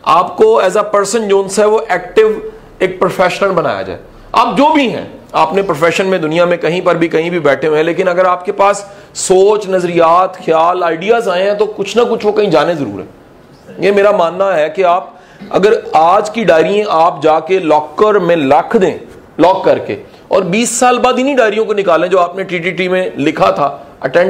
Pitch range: 170-215 Hz